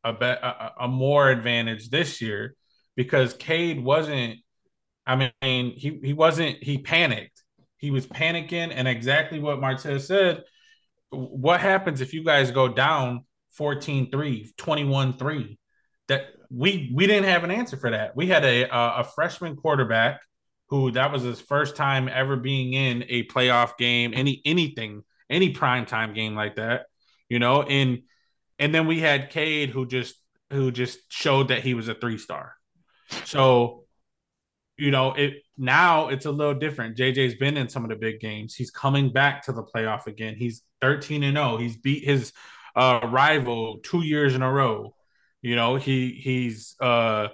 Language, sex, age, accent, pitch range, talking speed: English, male, 20-39, American, 120-145 Hz, 165 wpm